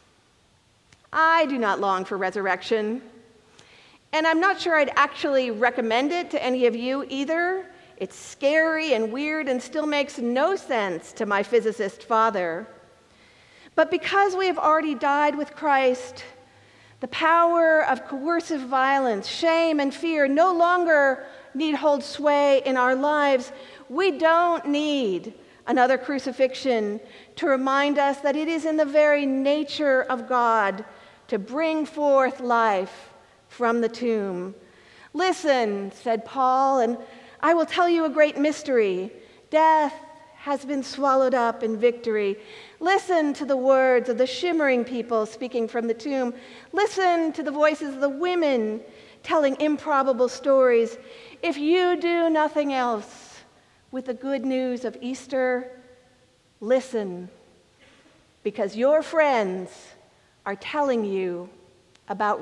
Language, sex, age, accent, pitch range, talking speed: English, female, 50-69, American, 230-310 Hz, 135 wpm